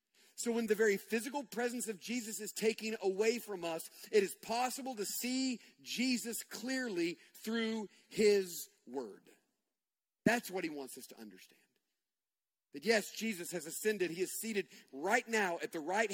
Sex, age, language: male, 40-59, English